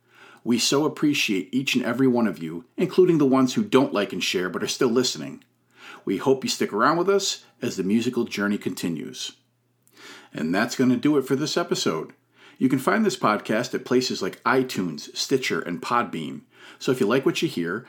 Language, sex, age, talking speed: English, male, 40-59, 205 wpm